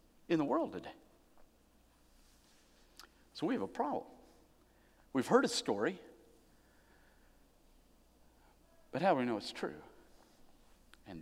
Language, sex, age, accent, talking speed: Russian, male, 50-69, American, 110 wpm